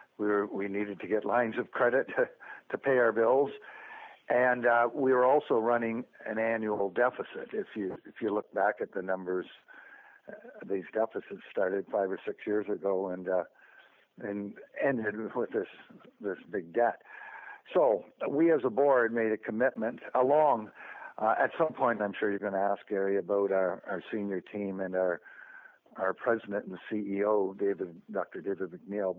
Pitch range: 100-125 Hz